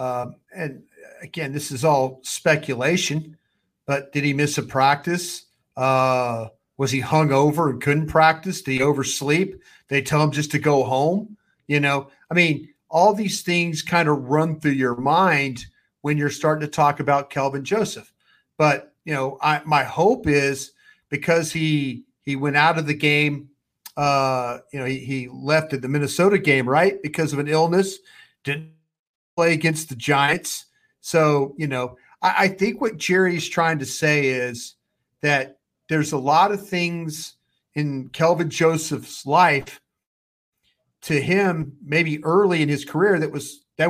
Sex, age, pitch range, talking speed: male, 40-59, 135-160 Hz, 160 wpm